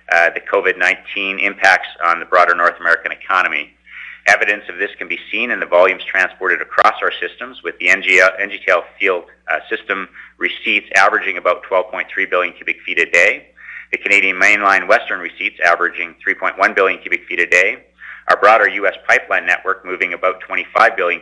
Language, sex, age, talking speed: English, male, 40-59, 165 wpm